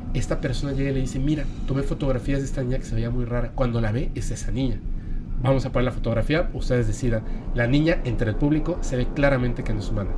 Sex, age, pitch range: male, 40-59, 120-150 Hz